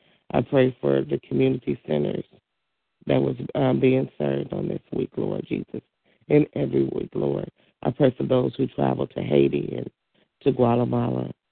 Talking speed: 160 wpm